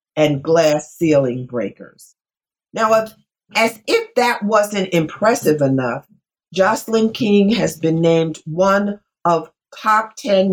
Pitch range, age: 165-230 Hz, 50-69